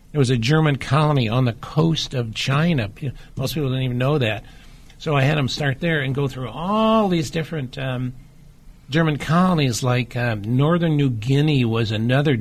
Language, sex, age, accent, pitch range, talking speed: English, male, 60-79, American, 115-145 Hz, 185 wpm